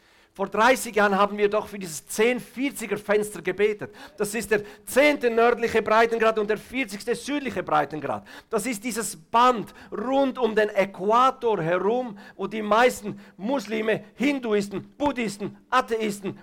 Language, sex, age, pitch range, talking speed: German, male, 50-69, 205-240 Hz, 135 wpm